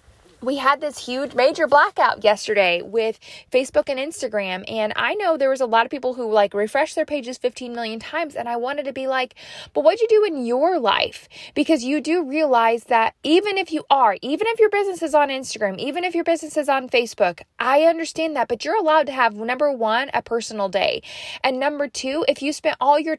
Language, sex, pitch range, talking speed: English, female, 230-310 Hz, 220 wpm